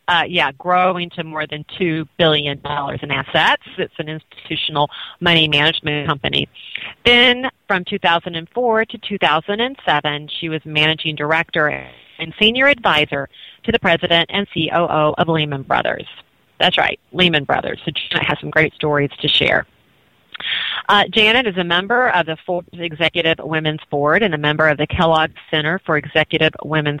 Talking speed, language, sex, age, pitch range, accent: 155 wpm, English, female, 40-59, 150-195 Hz, American